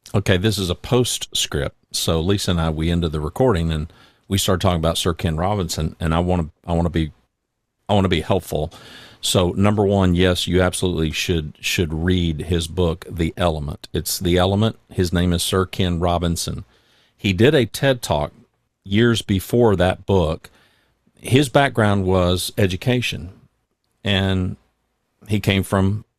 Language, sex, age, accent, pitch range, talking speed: English, male, 50-69, American, 85-110 Hz, 170 wpm